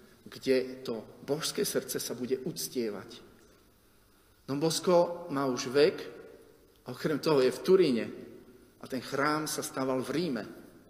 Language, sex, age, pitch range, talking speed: Slovak, male, 40-59, 120-140 Hz, 140 wpm